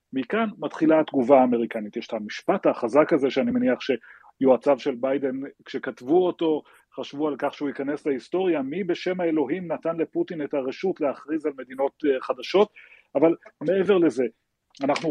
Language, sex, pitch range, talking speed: Hebrew, male, 135-190 Hz, 145 wpm